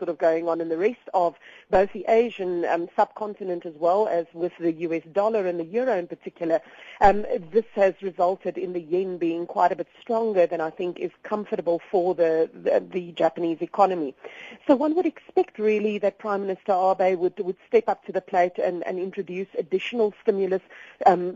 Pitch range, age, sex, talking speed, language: 175-210 Hz, 40-59, female, 195 wpm, English